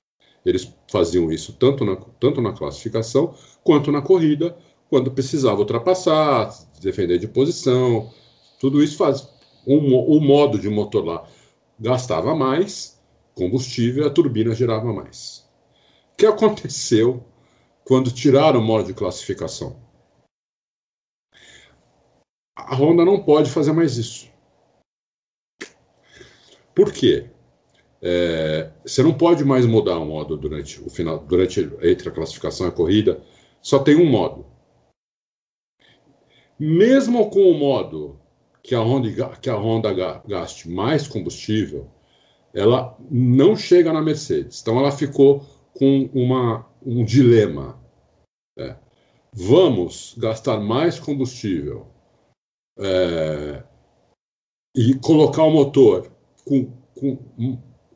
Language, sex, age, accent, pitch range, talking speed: Portuguese, male, 50-69, Brazilian, 110-150 Hz, 115 wpm